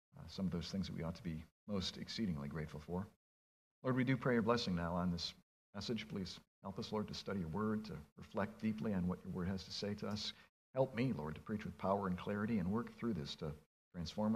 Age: 50-69